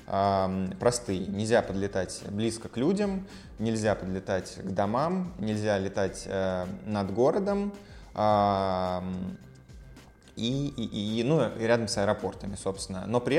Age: 20-39